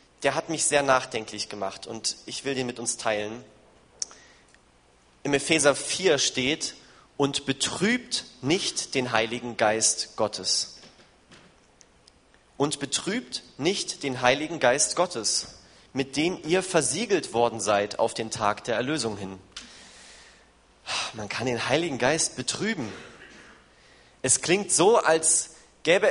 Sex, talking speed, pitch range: male, 125 wpm, 120-165 Hz